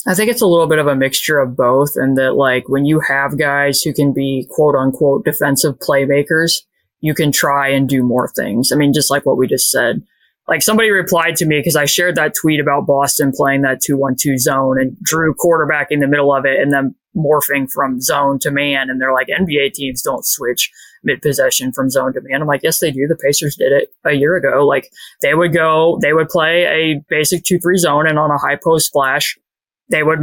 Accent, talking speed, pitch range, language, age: American, 225 wpm, 135-160 Hz, English, 20-39